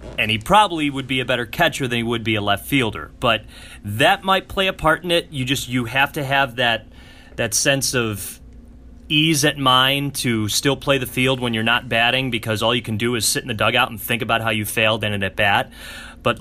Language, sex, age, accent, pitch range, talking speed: English, male, 30-49, American, 115-150 Hz, 240 wpm